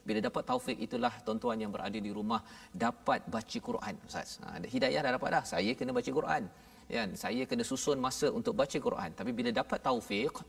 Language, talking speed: Malayalam, 195 wpm